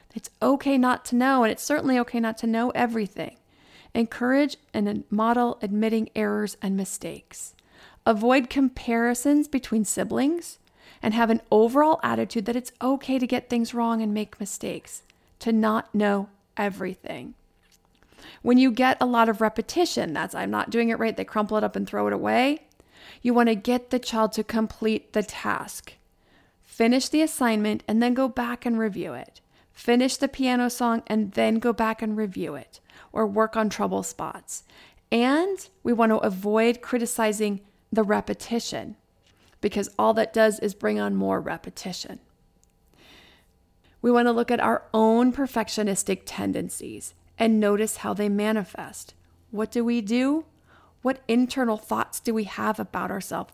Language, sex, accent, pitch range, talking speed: English, female, American, 210-245 Hz, 160 wpm